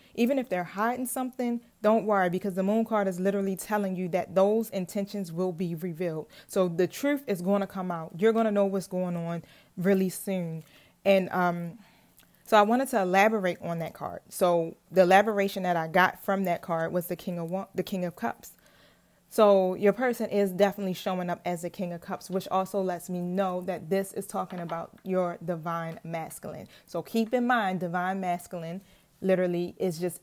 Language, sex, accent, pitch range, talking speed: English, female, American, 175-205 Hz, 195 wpm